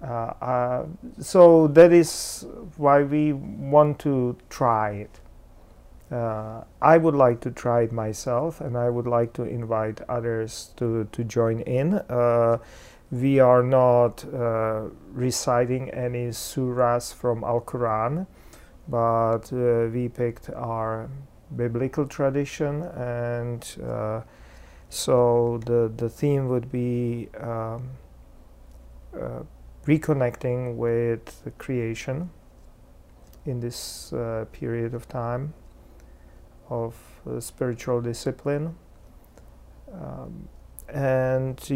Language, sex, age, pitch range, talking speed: English, male, 40-59, 115-130 Hz, 105 wpm